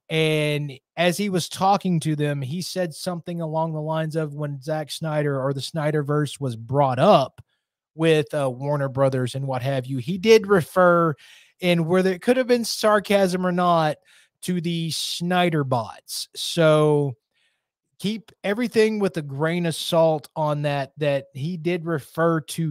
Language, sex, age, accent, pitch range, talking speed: English, male, 20-39, American, 140-170 Hz, 165 wpm